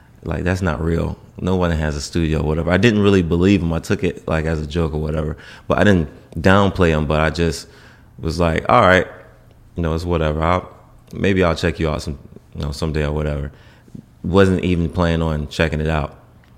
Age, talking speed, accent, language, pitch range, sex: 20-39, 215 wpm, American, English, 80-90 Hz, male